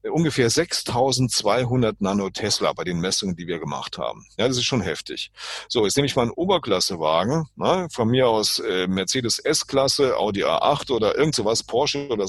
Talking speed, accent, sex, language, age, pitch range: 180 wpm, German, male, German, 40-59, 100-135 Hz